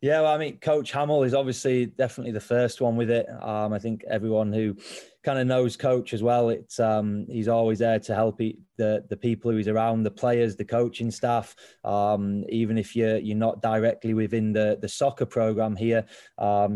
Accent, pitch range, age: British, 105-115 Hz, 20-39